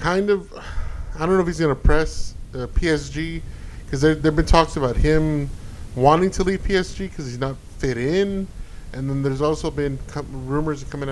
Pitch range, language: 110-155 Hz, English